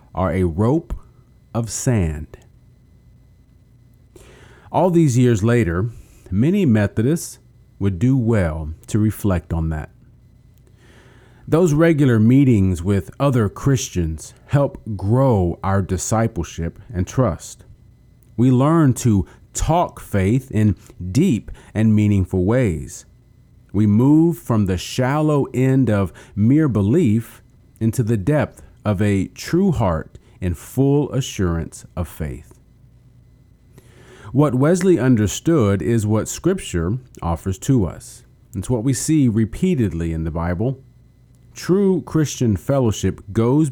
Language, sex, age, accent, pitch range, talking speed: English, male, 40-59, American, 100-125 Hz, 115 wpm